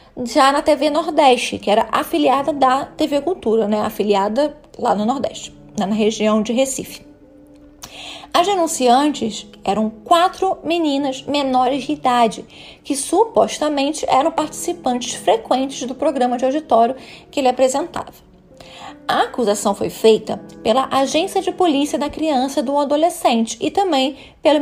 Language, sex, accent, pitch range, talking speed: Portuguese, female, Brazilian, 240-315 Hz, 135 wpm